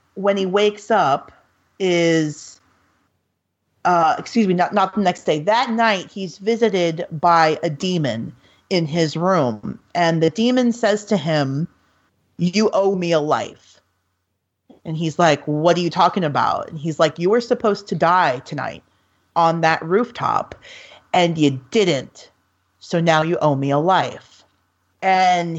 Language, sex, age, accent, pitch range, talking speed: English, female, 40-59, American, 150-205 Hz, 150 wpm